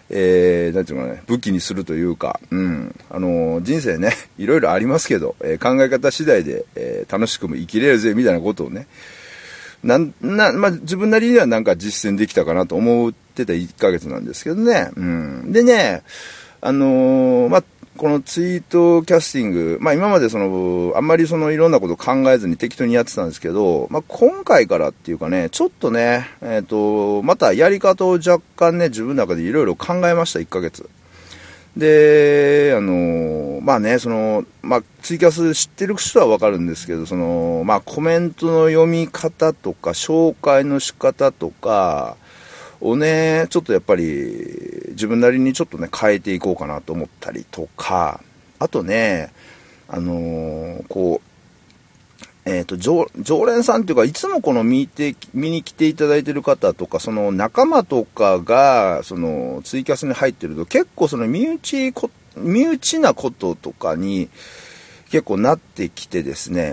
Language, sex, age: Japanese, male, 40-59